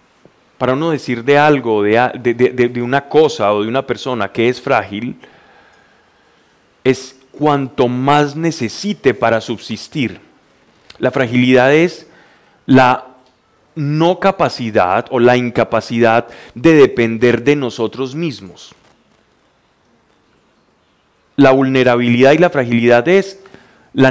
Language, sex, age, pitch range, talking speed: Spanish, male, 30-49, 120-160 Hz, 110 wpm